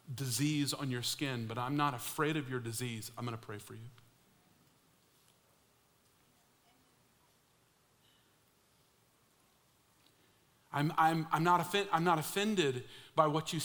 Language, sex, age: English, male, 40-59